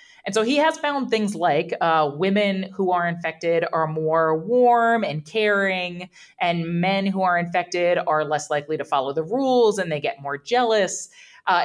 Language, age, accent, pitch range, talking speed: English, 20-39, American, 165-220 Hz, 180 wpm